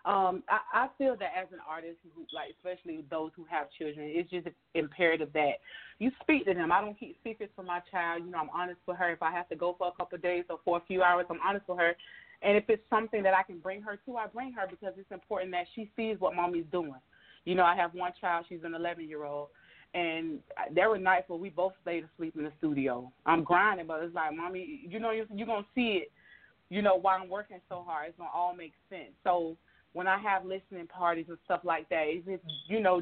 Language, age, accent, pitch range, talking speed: English, 30-49, American, 165-195 Hz, 255 wpm